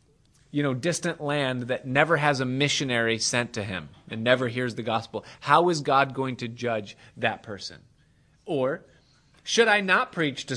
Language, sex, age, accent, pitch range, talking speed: English, male, 30-49, American, 115-145 Hz, 175 wpm